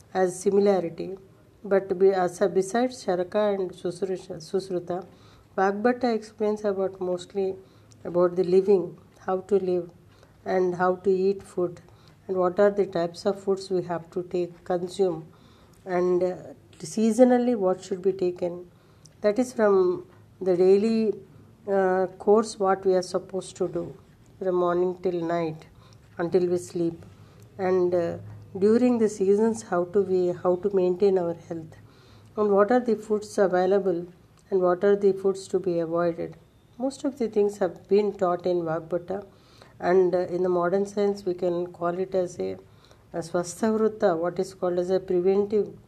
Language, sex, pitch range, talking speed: English, female, 175-195 Hz, 155 wpm